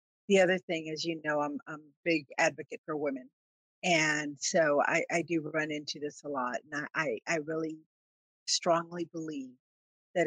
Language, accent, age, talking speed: English, American, 50-69, 175 wpm